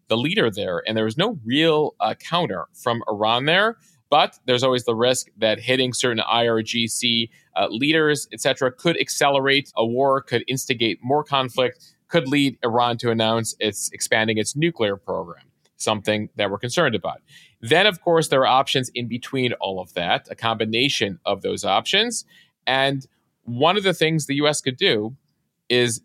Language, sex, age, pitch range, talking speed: English, male, 30-49, 110-140 Hz, 170 wpm